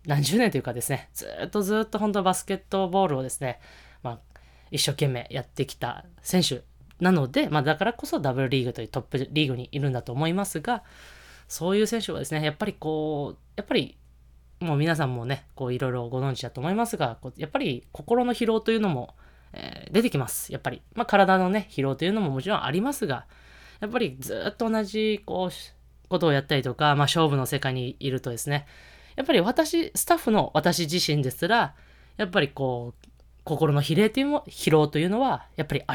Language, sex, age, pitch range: Japanese, female, 20-39, 130-195 Hz